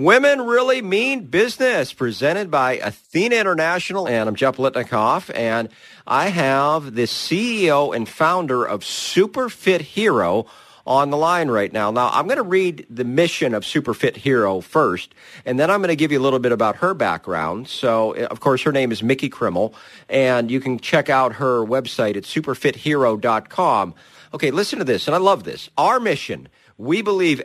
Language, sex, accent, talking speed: English, male, American, 175 wpm